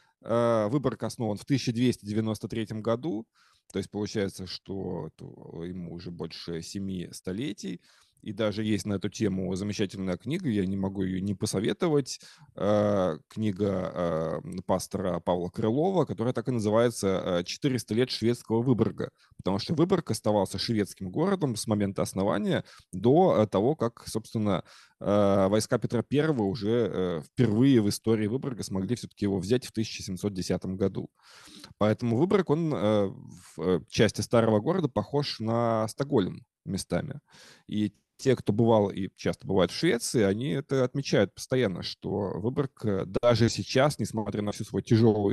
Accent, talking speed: native, 135 wpm